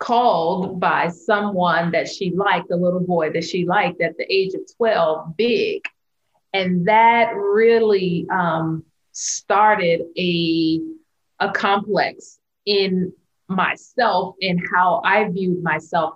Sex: female